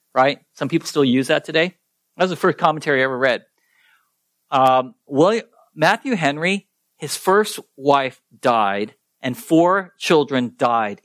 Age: 50-69